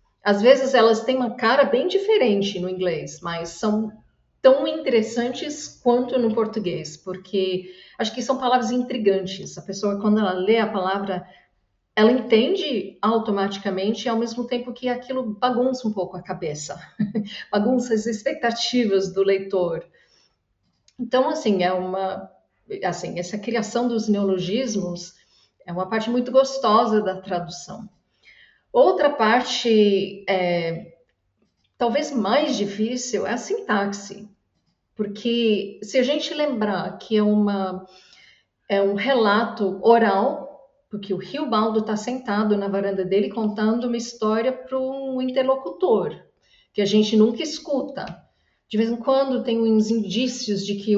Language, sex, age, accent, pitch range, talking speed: Portuguese, female, 50-69, Brazilian, 195-250 Hz, 135 wpm